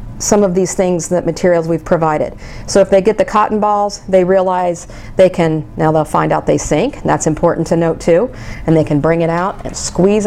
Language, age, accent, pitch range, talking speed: English, 40-59, American, 165-230 Hz, 220 wpm